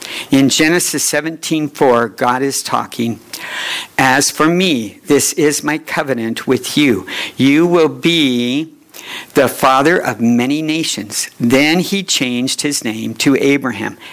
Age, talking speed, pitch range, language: 60-79, 125 wpm, 125-155 Hz, English